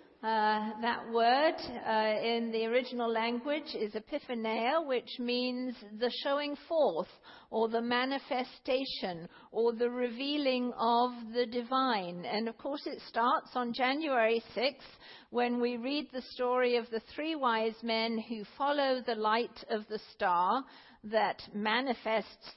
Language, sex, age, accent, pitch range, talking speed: English, female, 50-69, British, 215-255 Hz, 135 wpm